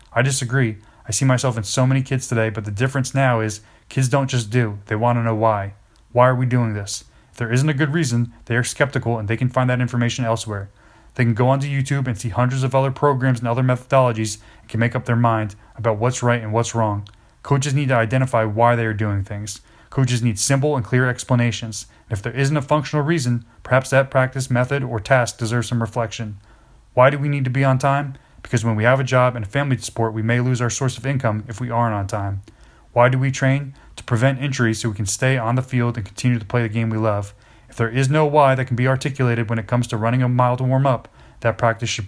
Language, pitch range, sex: English, 110-130 Hz, male